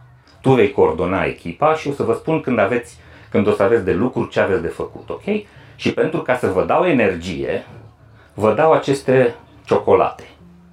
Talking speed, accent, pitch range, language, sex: 185 wpm, native, 115-170 Hz, Romanian, male